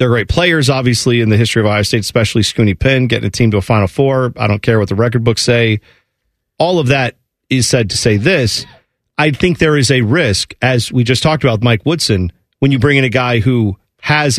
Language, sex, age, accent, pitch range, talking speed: English, male, 40-59, American, 115-145 Hz, 240 wpm